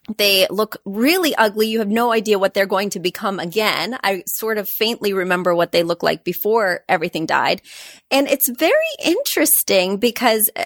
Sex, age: female, 30-49